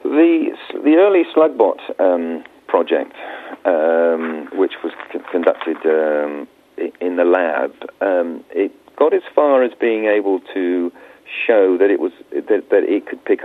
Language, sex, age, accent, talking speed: English, male, 40-59, British, 145 wpm